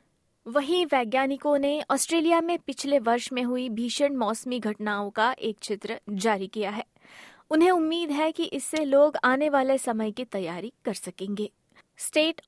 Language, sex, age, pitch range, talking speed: Hindi, female, 20-39, 225-295 Hz, 155 wpm